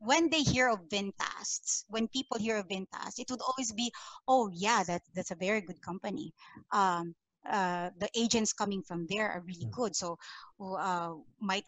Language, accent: English, Filipino